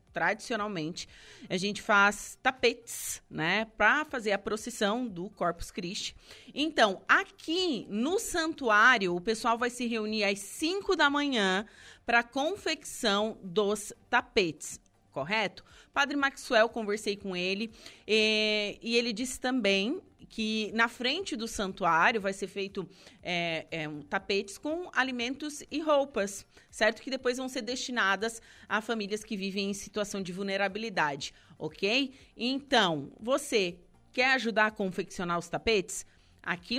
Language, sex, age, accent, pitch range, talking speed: Portuguese, female, 30-49, Brazilian, 195-255 Hz, 130 wpm